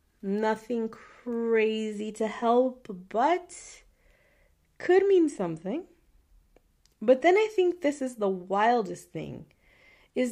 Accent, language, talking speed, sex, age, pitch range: American, English, 105 wpm, female, 30-49, 195-285 Hz